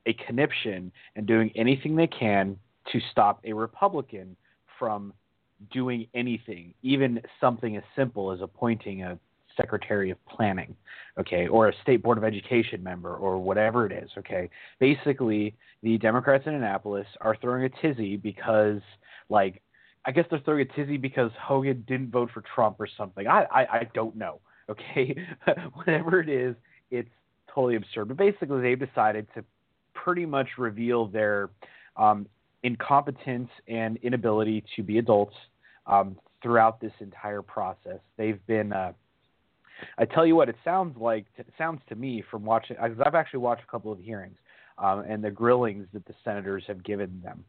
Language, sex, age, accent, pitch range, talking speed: English, male, 30-49, American, 105-125 Hz, 160 wpm